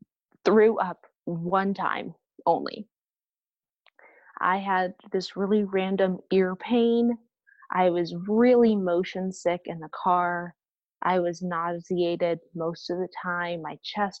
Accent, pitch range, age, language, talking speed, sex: American, 175-210 Hz, 20-39, English, 125 wpm, female